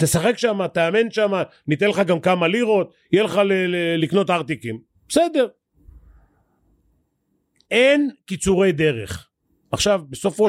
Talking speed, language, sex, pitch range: 120 wpm, Hebrew, male, 130-190 Hz